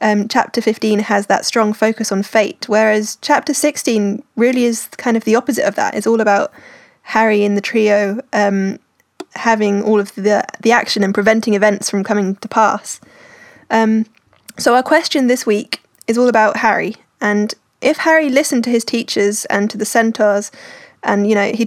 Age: 10-29